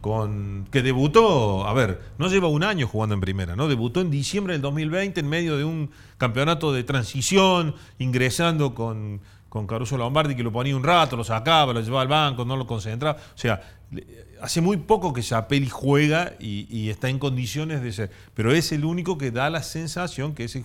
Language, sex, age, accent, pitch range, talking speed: Spanish, male, 40-59, Argentinian, 105-155 Hz, 205 wpm